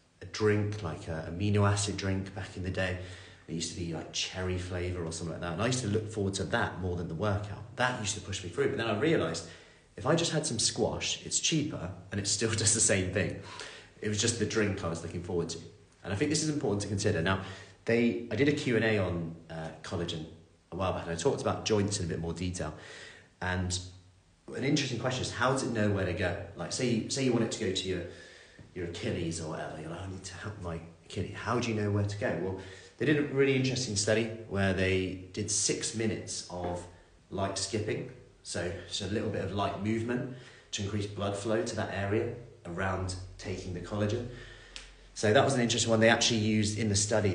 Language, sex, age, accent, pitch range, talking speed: English, male, 30-49, British, 90-110 Hz, 240 wpm